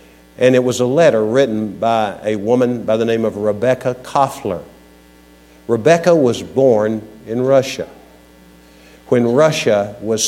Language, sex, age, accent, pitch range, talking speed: English, male, 50-69, American, 105-140 Hz, 135 wpm